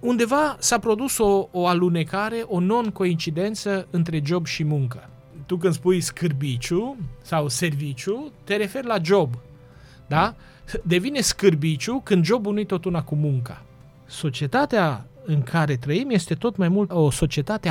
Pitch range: 145-200 Hz